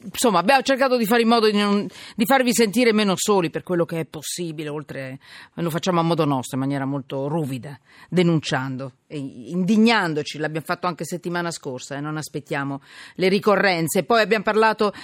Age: 40-59